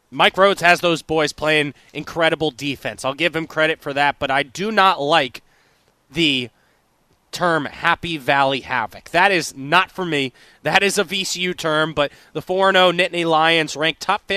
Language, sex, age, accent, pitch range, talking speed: English, male, 20-39, American, 150-185 Hz, 170 wpm